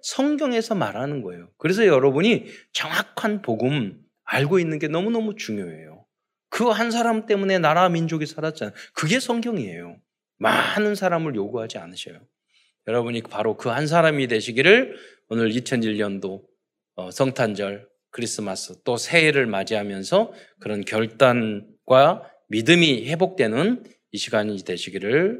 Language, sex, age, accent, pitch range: Korean, male, 20-39, native, 110-180 Hz